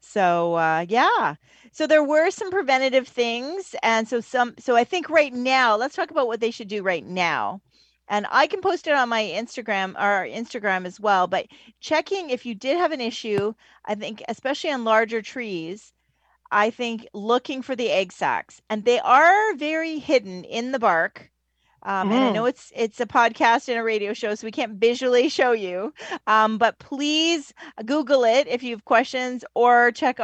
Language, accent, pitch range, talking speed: English, American, 210-255 Hz, 190 wpm